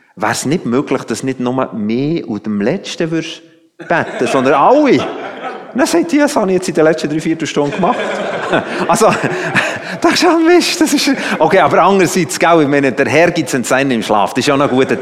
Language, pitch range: German, 130-185 Hz